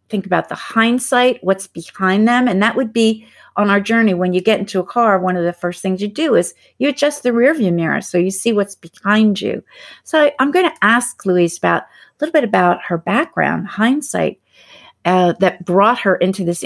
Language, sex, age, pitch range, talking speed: English, female, 50-69, 180-235 Hz, 215 wpm